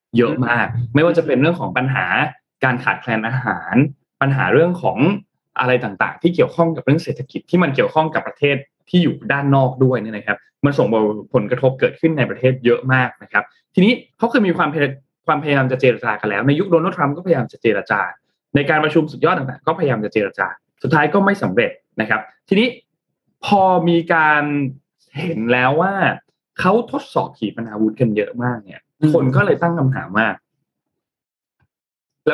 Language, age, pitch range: Thai, 20-39, 120-165 Hz